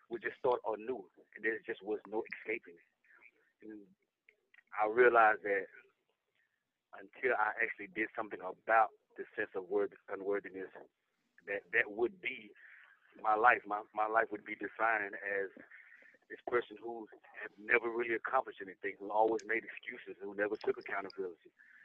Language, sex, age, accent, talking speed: English, male, 30-49, American, 155 wpm